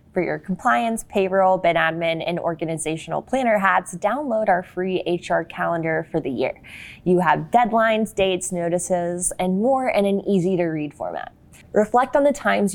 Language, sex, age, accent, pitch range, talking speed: English, female, 20-39, American, 170-210 Hz, 165 wpm